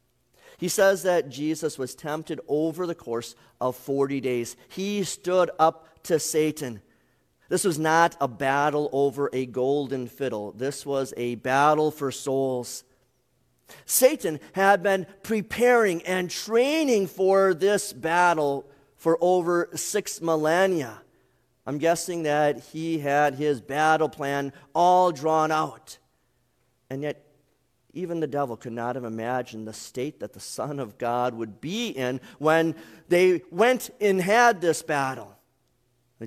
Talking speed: 135 wpm